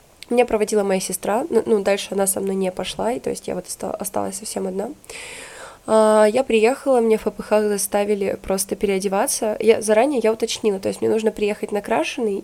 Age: 20-39